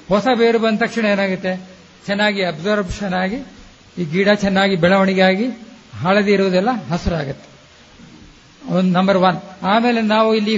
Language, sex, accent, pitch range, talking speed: Kannada, male, native, 180-220 Hz, 120 wpm